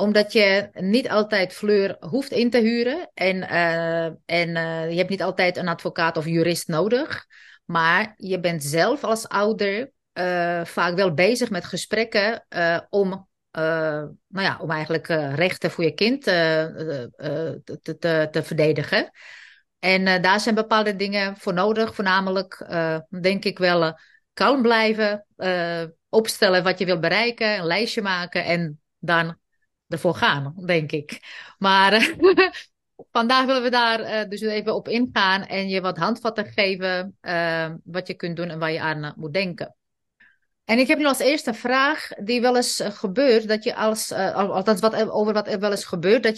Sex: female